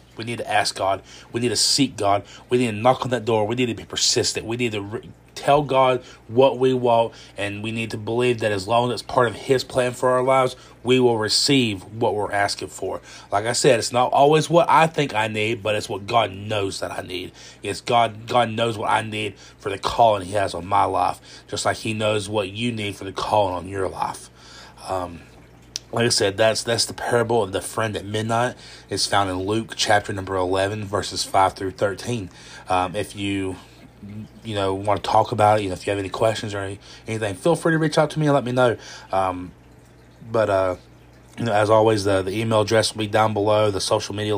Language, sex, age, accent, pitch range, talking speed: English, male, 30-49, American, 100-120 Hz, 235 wpm